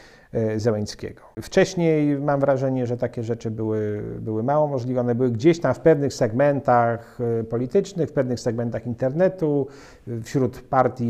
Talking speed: 130 wpm